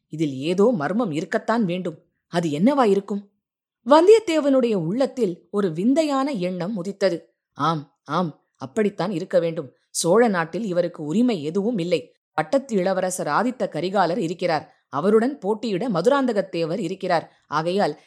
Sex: female